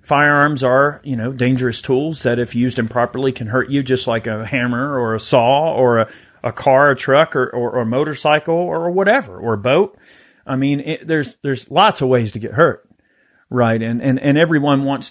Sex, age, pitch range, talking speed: male, 40-59, 120-150 Hz, 210 wpm